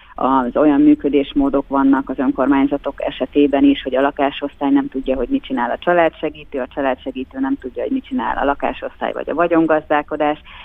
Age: 30-49